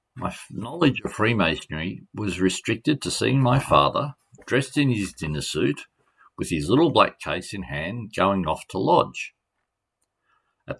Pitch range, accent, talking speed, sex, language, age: 85-120 Hz, Australian, 150 wpm, male, English, 50-69